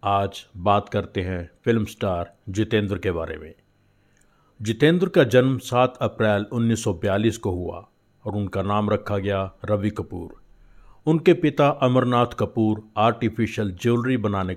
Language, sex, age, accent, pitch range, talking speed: Hindi, male, 50-69, native, 100-120 Hz, 130 wpm